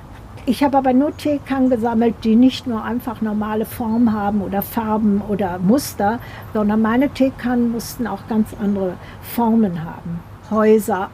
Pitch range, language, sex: 210-255 Hz, German, female